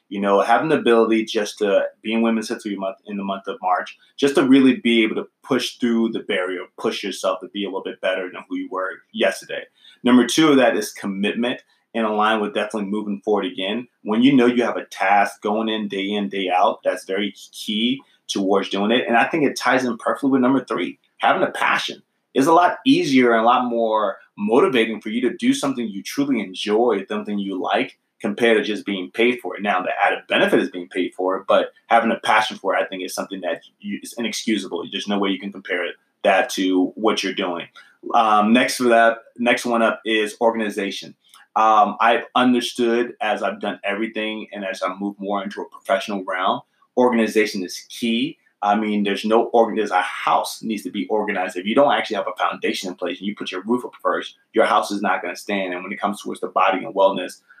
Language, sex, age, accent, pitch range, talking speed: English, male, 30-49, American, 100-120 Hz, 225 wpm